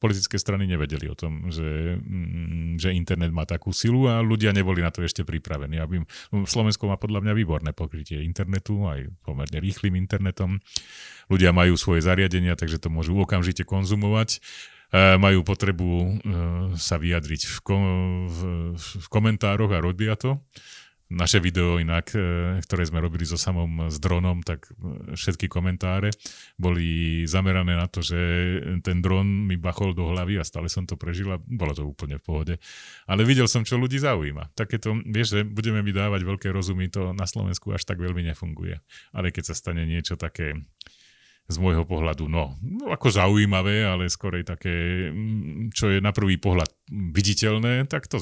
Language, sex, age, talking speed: Slovak, male, 30-49, 165 wpm